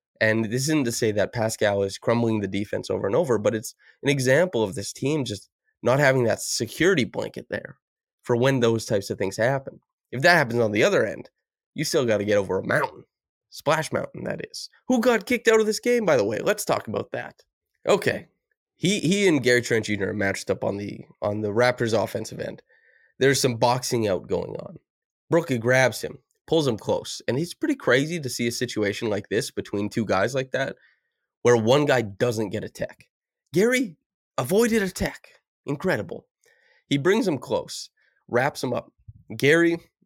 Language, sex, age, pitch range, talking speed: English, male, 20-39, 110-150 Hz, 195 wpm